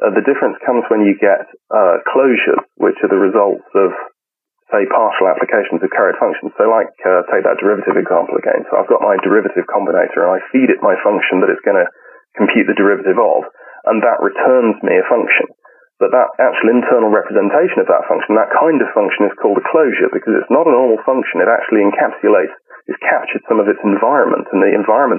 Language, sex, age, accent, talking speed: English, male, 30-49, British, 210 wpm